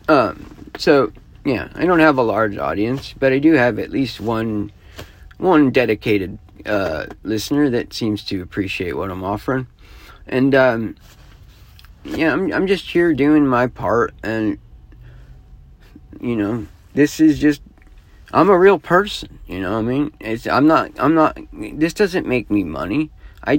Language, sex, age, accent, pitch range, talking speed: English, male, 50-69, American, 90-140 Hz, 160 wpm